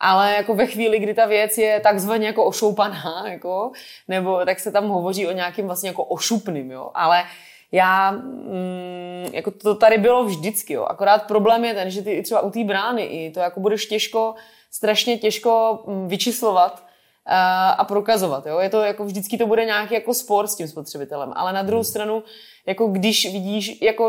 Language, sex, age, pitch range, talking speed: Czech, female, 20-39, 180-215 Hz, 185 wpm